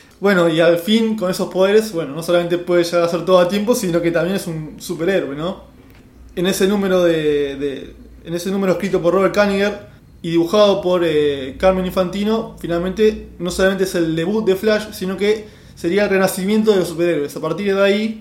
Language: Spanish